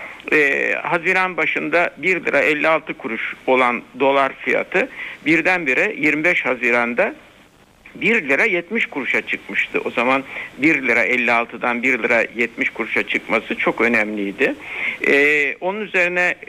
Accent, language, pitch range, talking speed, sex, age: native, Turkish, 135-190 Hz, 120 wpm, male, 60-79